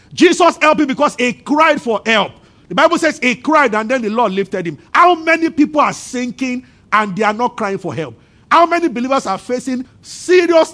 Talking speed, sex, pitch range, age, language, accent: 205 wpm, male, 210-295 Hz, 50-69, English, Nigerian